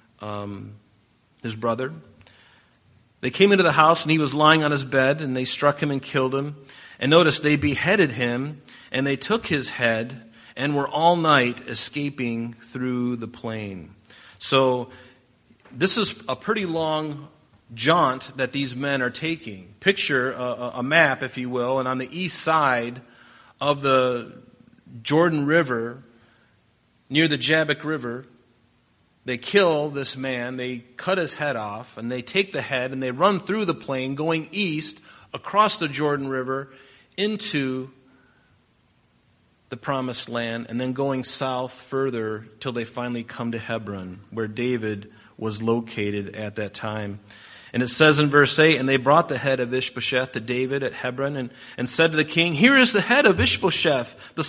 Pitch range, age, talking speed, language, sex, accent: 120-155 Hz, 40-59, 165 wpm, English, male, American